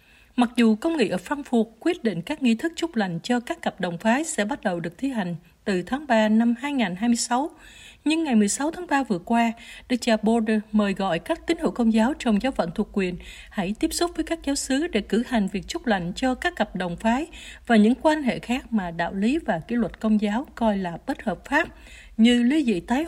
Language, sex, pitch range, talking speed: Vietnamese, female, 205-270 Hz, 235 wpm